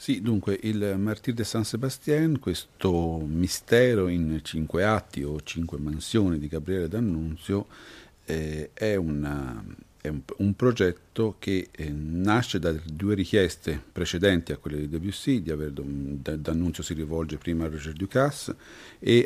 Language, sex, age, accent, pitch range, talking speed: Italian, male, 50-69, native, 80-110 Hz, 145 wpm